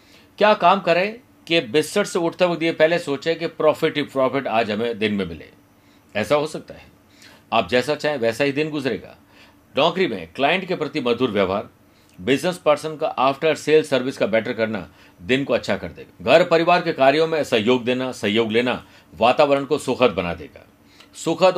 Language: Hindi